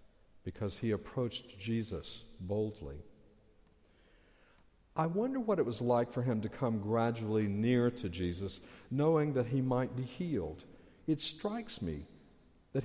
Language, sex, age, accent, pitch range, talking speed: English, male, 60-79, American, 100-150 Hz, 135 wpm